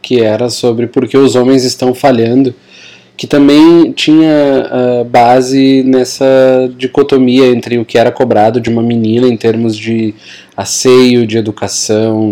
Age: 20-39